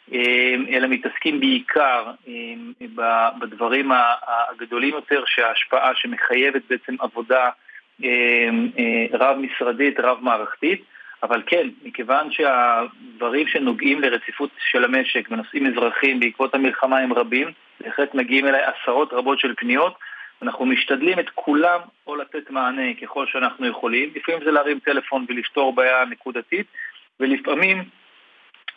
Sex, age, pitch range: male, 40-59, 125-170 Hz